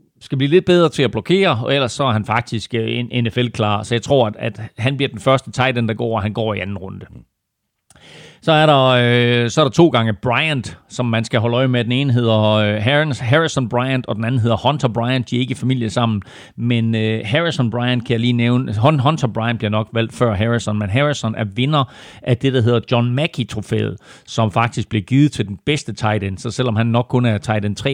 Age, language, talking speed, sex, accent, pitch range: 40-59, Danish, 235 wpm, male, native, 110-130 Hz